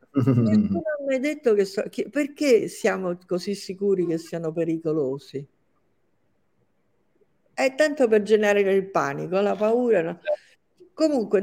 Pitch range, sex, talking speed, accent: 175-250 Hz, female, 90 wpm, native